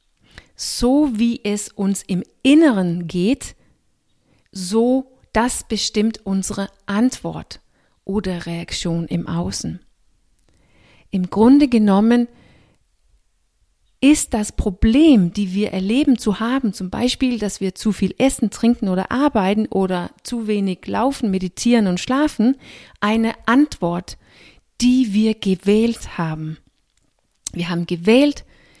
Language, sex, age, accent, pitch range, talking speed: German, female, 40-59, German, 190-245 Hz, 110 wpm